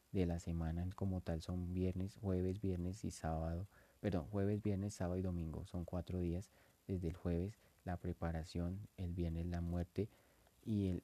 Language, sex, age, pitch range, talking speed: English, male, 30-49, 85-100 Hz, 165 wpm